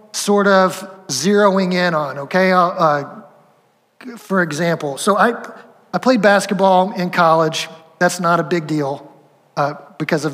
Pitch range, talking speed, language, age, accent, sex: 180-220 Hz, 140 wpm, English, 30-49, American, male